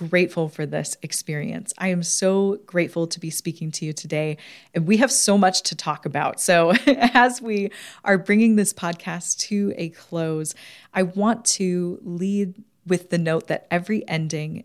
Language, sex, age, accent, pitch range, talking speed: English, female, 30-49, American, 155-185 Hz, 170 wpm